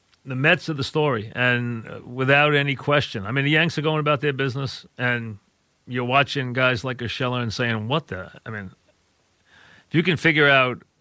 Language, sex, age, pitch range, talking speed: English, male, 40-59, 110-140 Hz, 190 wpm